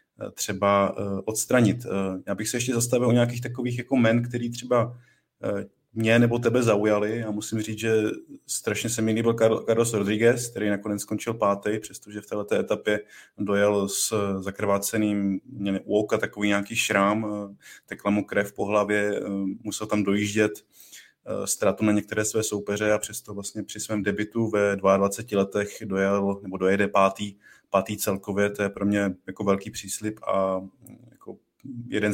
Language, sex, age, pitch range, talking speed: Czech, male, 20-39, 100-110 Hz, 150 wpm